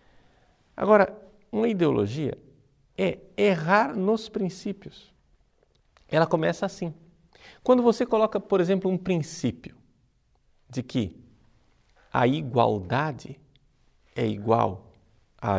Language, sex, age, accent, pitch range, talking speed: Portuguese, male, 50-69, Brazilian, 110-180 Hz, 90 wpm